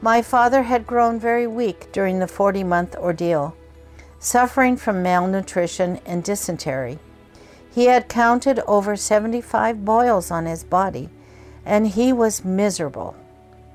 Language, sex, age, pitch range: English, female, 60-79, 175-255 Hz